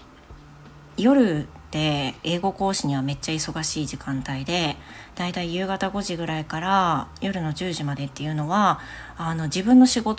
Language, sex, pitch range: Japanese, female, 150-205 Hz